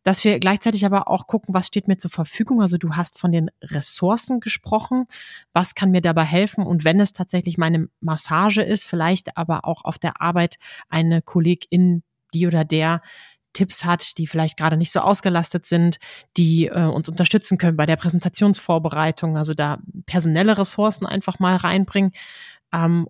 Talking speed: 170 wpm